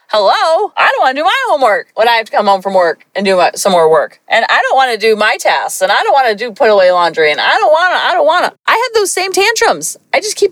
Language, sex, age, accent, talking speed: English, female, 40-59, American, 285 wpm